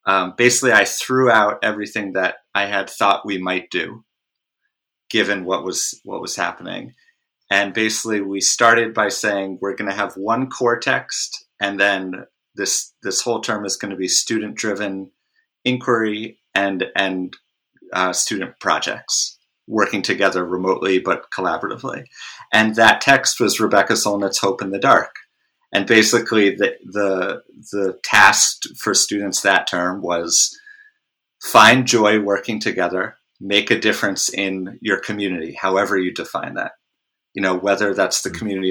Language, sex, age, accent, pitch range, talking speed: English, male, 30-49, American, 95-110 Hz, 145 wpm